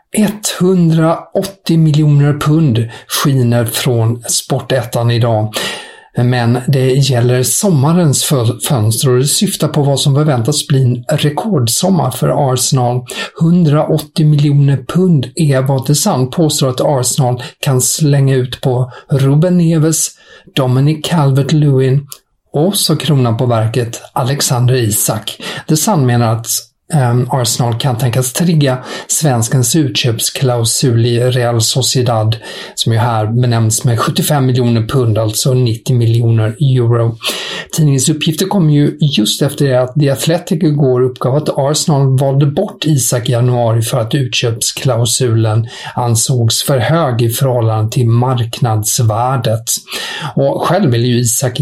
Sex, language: male, English